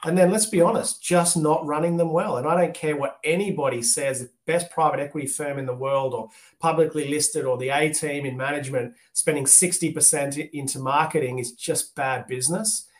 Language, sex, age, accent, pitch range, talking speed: English, male, 30-49, Australian, 130-160 Hz, 200 wpm